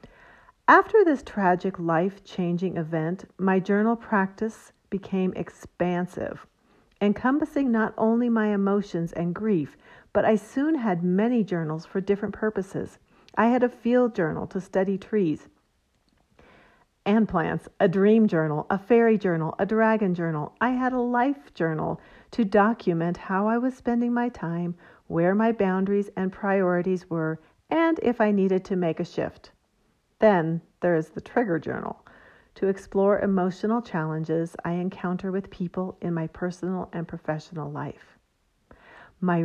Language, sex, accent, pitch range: English, female, American, 175-215 Hz